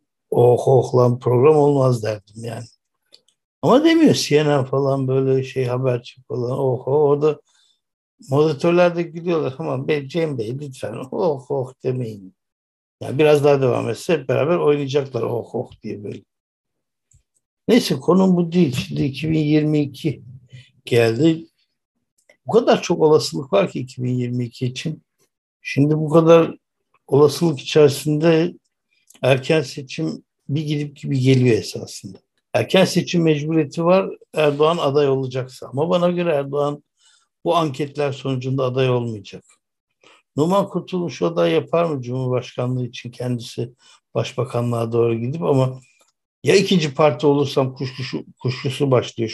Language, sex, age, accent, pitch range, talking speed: Turkish, male, 60-79, native, 125-160 Hz, 125 wpm